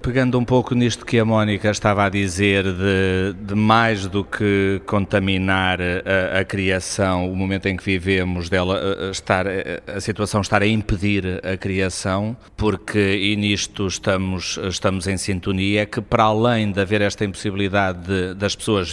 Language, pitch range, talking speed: Portuguese, 95-115 Hz, 160 wpm